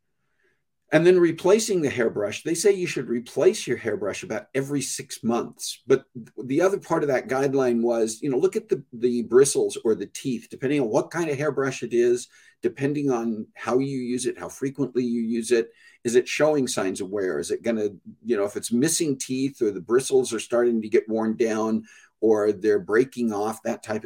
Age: 50-69